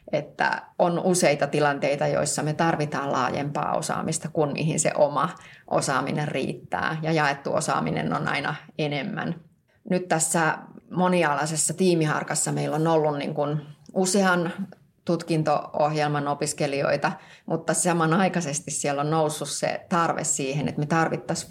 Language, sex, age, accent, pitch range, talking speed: Finnish, female, 30-49, native, 145-165 Hz, 120 wpm